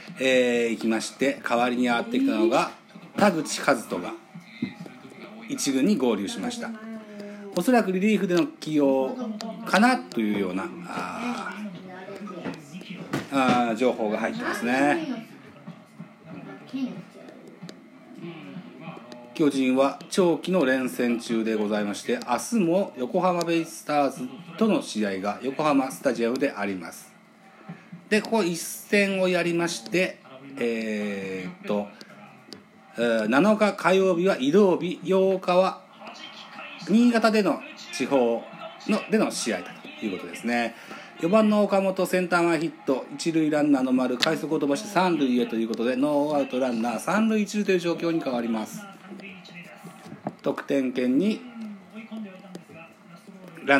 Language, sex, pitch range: Japanese, male, 125-200 Hz